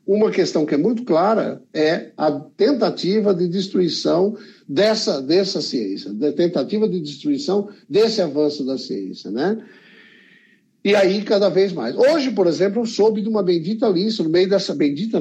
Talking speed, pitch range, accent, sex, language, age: 160 wpm, 155-220 Hz, Brazilian, male, Portuguese, 60-79